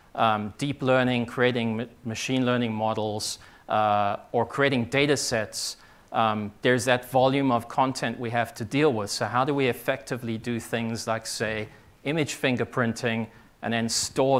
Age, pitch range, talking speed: 40-59, 115-135 Hz, 160 wpm